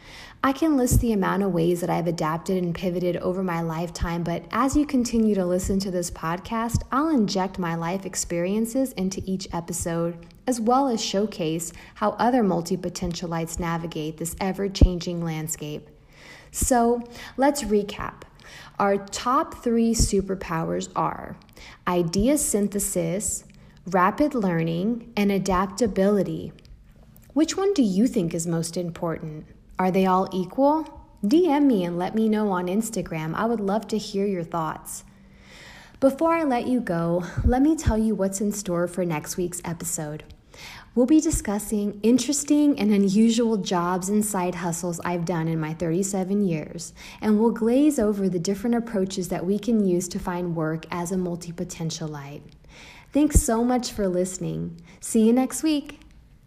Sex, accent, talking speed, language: female, American, 150 wpm, English